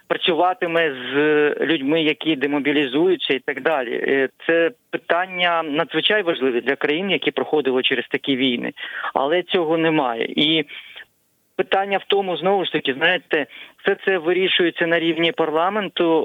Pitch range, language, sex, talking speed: 145-175 Hz, Ukrainian, male, 135 wpm